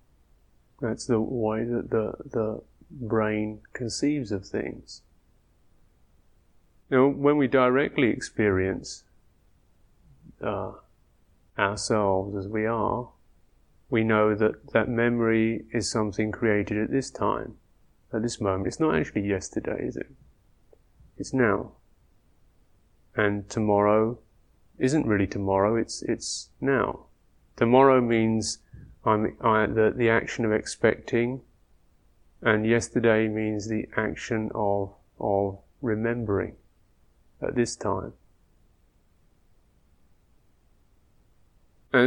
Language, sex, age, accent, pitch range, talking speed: English, male, 30-49, British, 100-115 Hz, 100 wpm